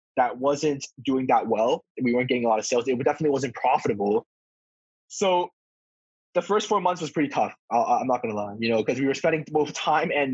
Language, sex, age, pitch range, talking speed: English, male, 20-39, 120-150 Hz, 220 wpm